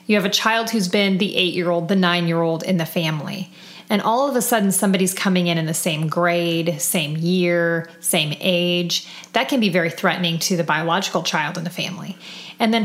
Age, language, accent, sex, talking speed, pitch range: 30-49, English, American, female, 200 wpm, 175-210 Hz